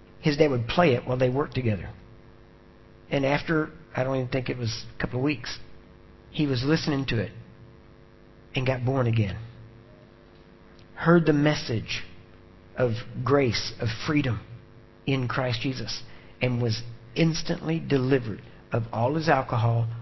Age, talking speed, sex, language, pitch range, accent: 50-69, 145 wpm, male, English, 115-150 Hz, American